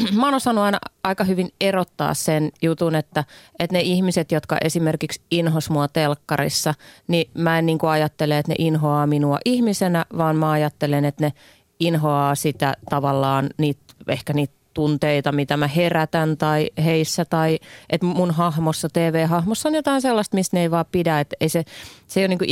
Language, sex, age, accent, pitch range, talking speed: Finnish, female, 30-49, native, 150-190 Hz, 170 wpm